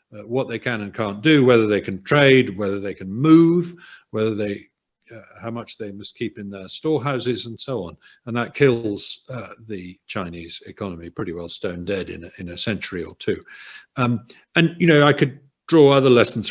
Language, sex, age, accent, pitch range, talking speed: English, male, 50-69, British, 115-170 Hz, 205 wpm